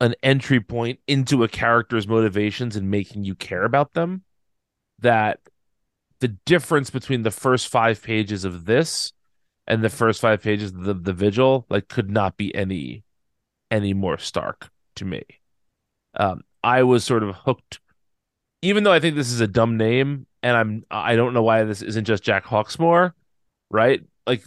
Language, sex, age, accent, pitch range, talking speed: English, male, 30-49, American, 100-125 Hz, 170 wpm